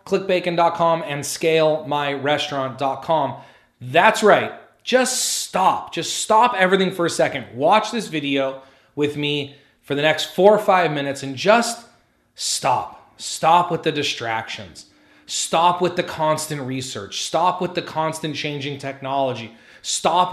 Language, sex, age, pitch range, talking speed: English, male, 30-49, 140-175 Hz, 130 wpm